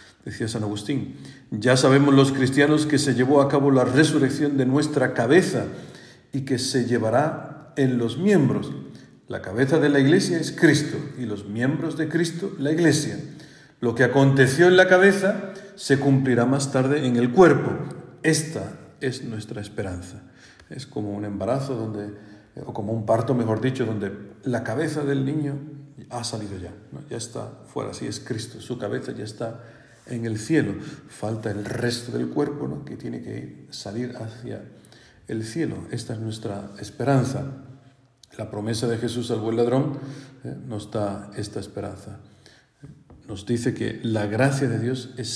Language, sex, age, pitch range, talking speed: Spanish, male, 50-69, 115-145 Hz, 165 wpm